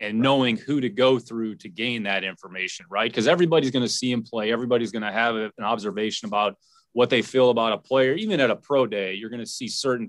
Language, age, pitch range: English, 30-49, 115-140 Hz